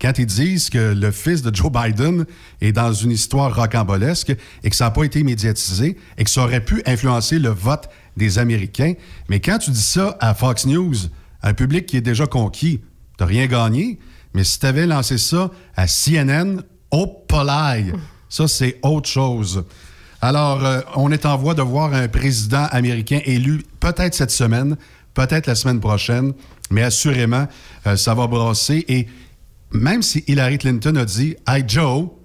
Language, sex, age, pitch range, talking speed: French, male, 60-79, 110-145 Hz, 180 wpm